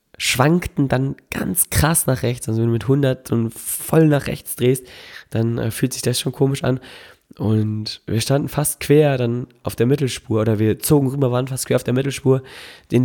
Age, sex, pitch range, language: 20-39, male, 120-140 Hz, German